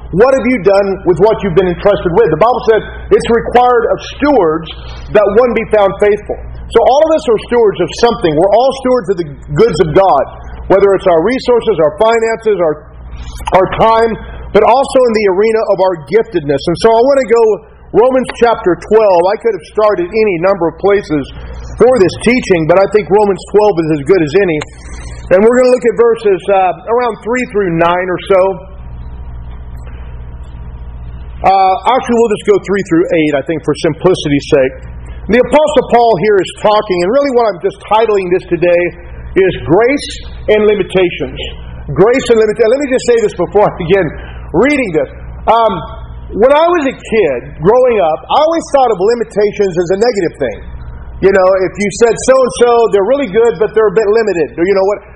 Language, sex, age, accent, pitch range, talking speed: English, male, 40-59, American, 170-230 Hz, 195 wpm